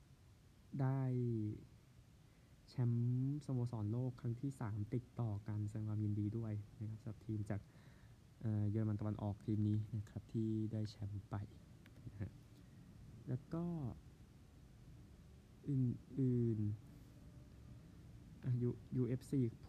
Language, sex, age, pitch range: Thai, male, 20-39, 105-125 Hz